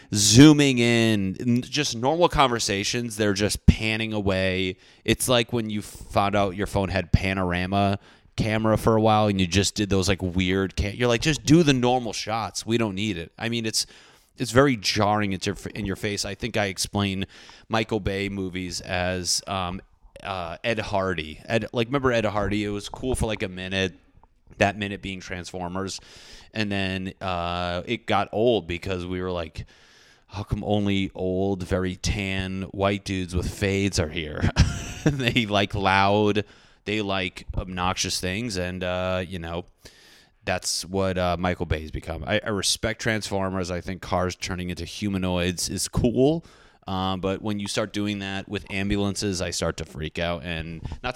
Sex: male